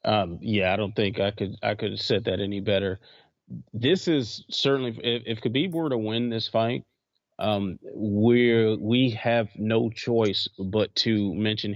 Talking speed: 175 wpm